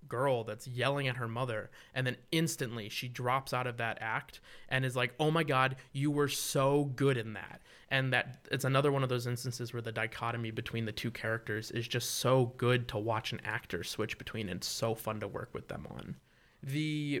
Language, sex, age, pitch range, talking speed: English, male, 20-39, 110-130 Hz, 215 wpm